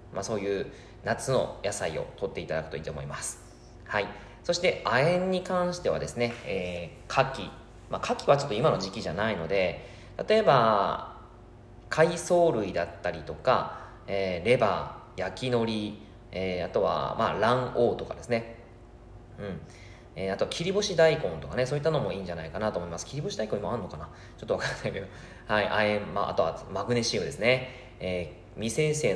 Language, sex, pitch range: Japanese, male, 90-120 Hz